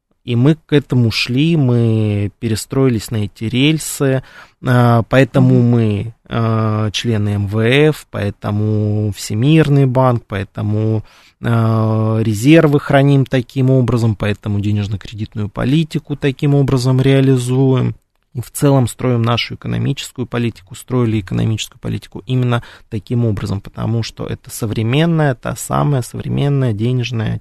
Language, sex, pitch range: Russian, male, 110-135 Hz